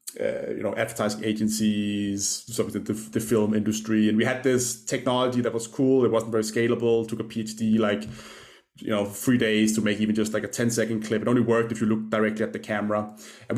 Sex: male